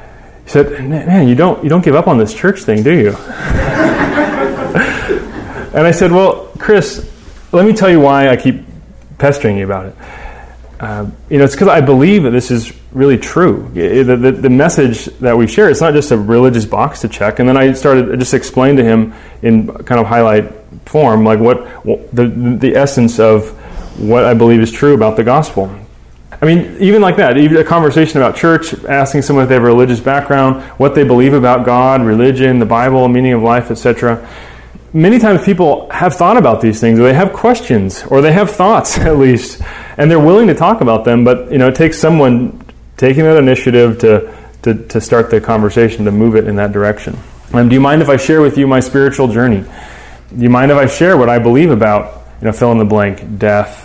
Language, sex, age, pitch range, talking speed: English, male, 30-49, 110-145 Hz, 215 wpm